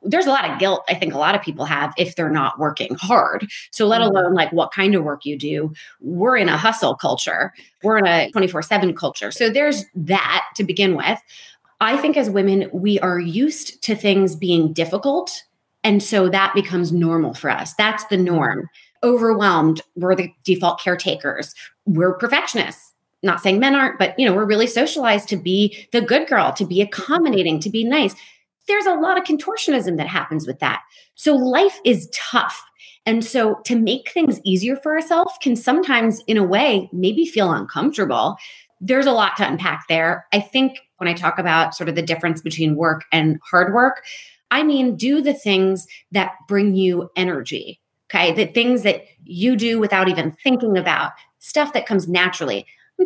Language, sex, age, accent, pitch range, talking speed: English, female, 30-49, American, 180-255 Hz, 190 wpm